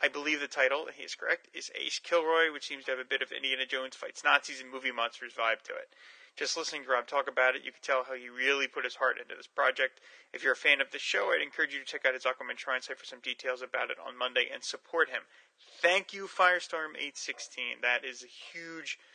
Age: 20-39